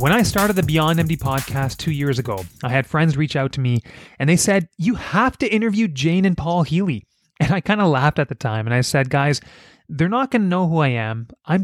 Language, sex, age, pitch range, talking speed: English, male, 30-49, 130-180 Hz, 255 wpm